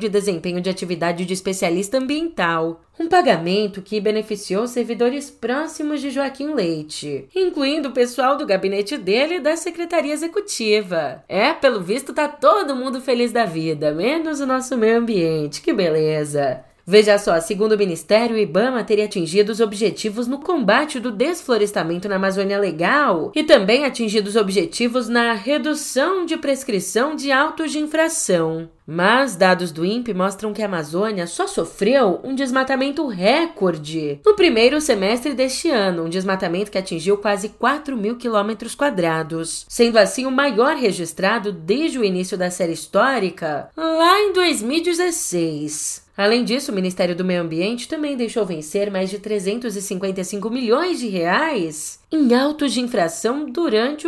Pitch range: 185-275 Hz